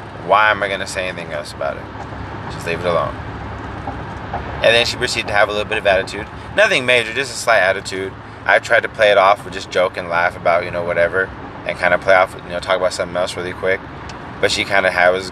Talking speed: 250 wpm